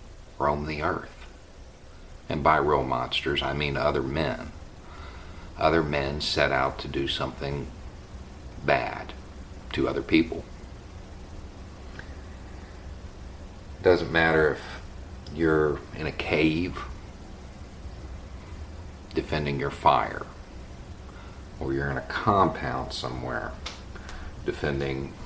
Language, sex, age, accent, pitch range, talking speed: English, male, 50-69, American, 70-90 Hz, 95 wpm